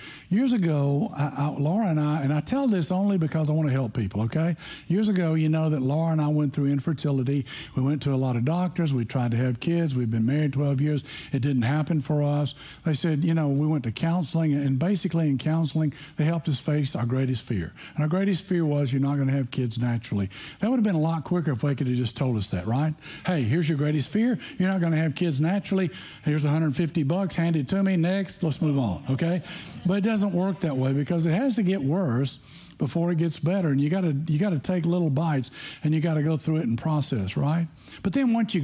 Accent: American